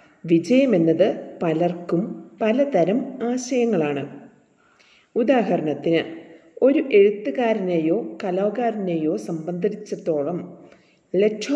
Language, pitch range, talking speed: English, 160-235 Hz, 80 wpm